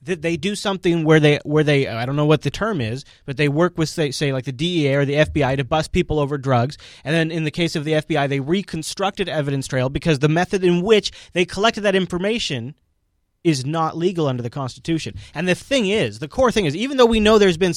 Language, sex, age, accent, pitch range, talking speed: English, male, 30-49, American, 145-195 Hz, 245 wpm